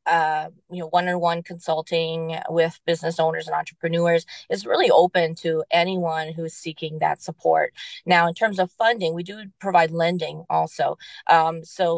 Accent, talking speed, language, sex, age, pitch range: American, 155 wpm, English, female, 20-39, 165-190 Hz